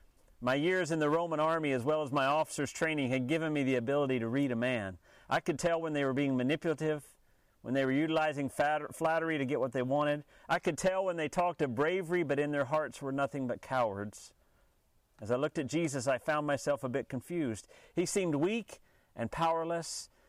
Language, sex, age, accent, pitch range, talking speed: English, male, 40-59, American, 130-165 Hz, 210 wpm